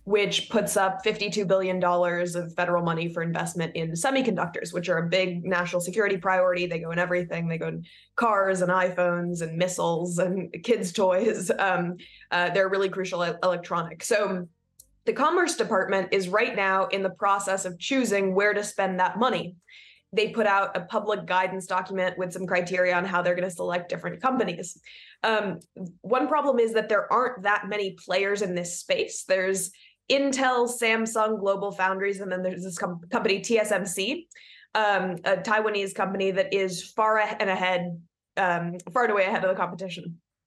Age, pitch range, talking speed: 20-39, 180-210 Hz, 175 wpm